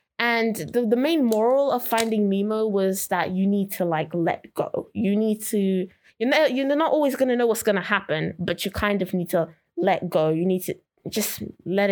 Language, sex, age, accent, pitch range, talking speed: English, female, 20-39, British, 180-225 Hz, 220 wpm